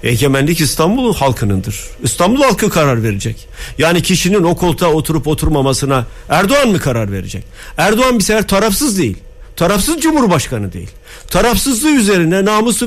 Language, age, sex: Turkish, 50-69, male